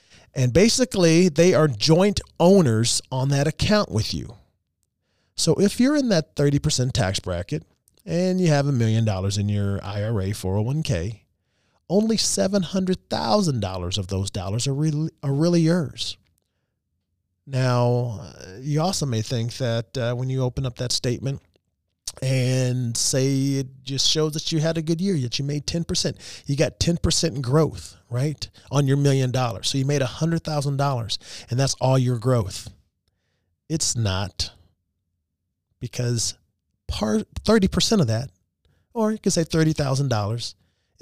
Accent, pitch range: American, 105-155 Hz